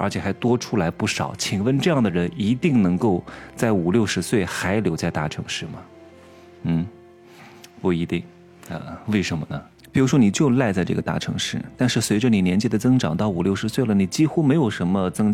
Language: Chinese